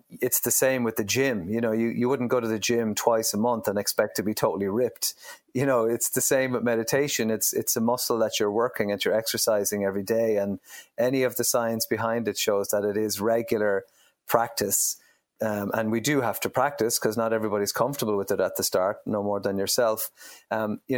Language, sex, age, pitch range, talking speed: English, male, 30-49, 110-125 Hz, 225 wpm